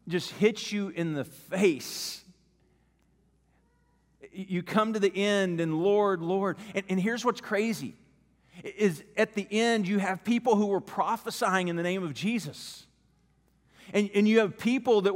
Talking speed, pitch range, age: 160 wpm, 170-215 Hz, 40-59